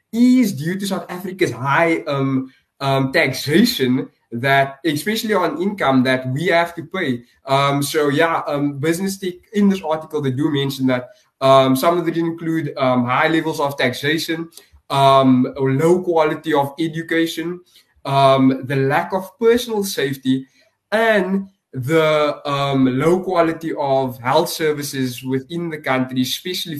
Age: 20-39